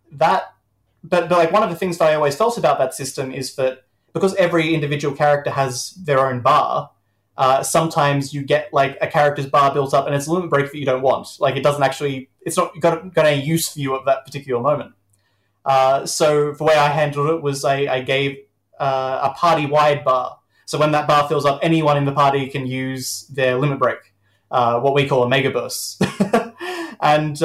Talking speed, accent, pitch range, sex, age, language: 215 wpm, Australian, 135-160 Hz, male, 20-39, English